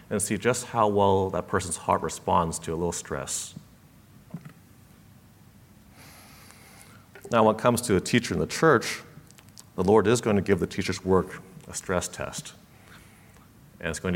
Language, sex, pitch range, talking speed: English, male, 90-110 Hz, 160 wpm